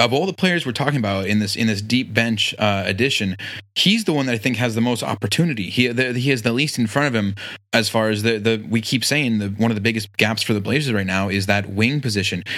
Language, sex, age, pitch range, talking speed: English, male, 20-39, 105-130 Hz, 275 wpm